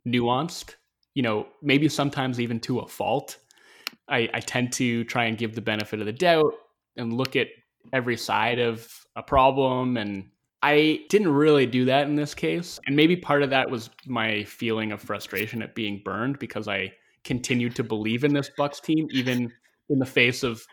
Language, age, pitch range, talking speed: English, 20-39, 110-135 Hz, 190 wpm